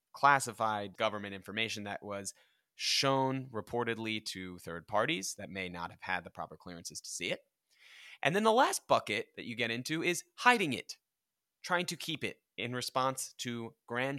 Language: English